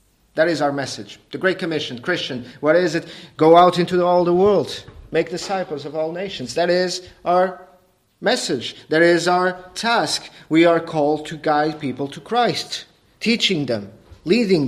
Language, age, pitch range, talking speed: English, 40-59, 130-180 Hz, 170 wpm